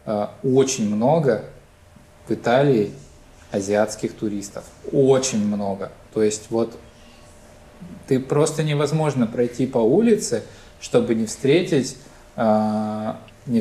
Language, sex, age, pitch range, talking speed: Russian, male, 20-39, 105-125 Hz, 90 wpm